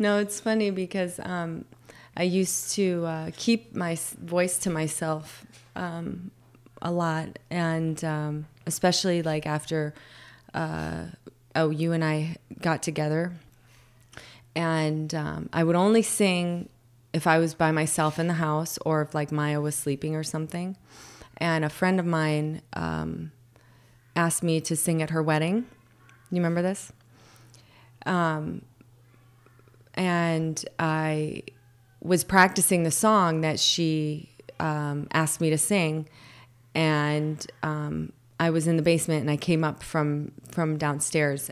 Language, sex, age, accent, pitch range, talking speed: English, female, 20-39, American, 145-175 Hz, 135 wpm